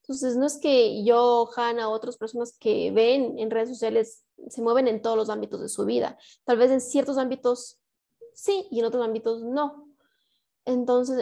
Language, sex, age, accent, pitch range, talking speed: Spanish, female, 20-39, Mexican, 225-265 Hz, 185 wpm